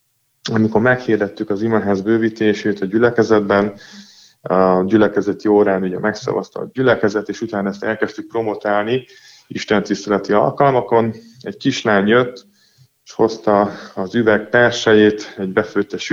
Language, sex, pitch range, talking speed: Hungarian, male, 100-115 Hz, 120 wpm